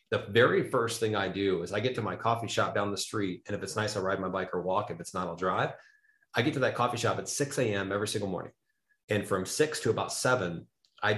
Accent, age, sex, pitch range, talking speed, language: American, 30-49, male, 100-125 Hz, 270 wpm, English